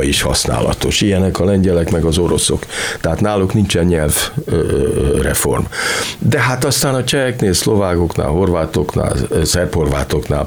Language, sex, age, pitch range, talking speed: Hungarian, male, 50-69, 80-105 Hz, 115 wpm